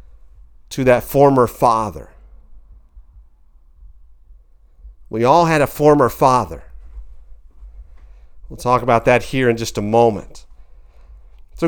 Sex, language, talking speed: male, English, 105 wpm